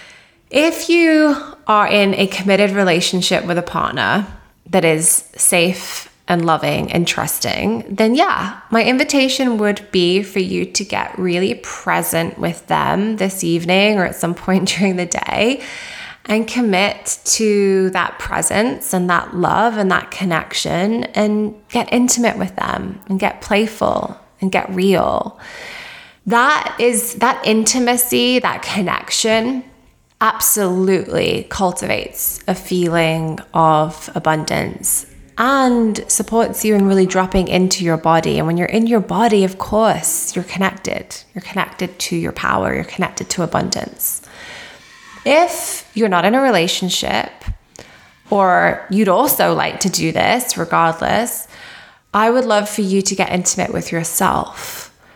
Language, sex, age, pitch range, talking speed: English, female, 20-39, 185-230 Hz, 135 wpm